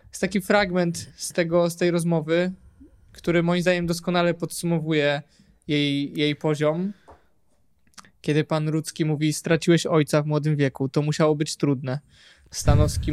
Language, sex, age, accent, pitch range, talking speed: Polish, male, 20-39, native, 160-200 Hz, 135 wpm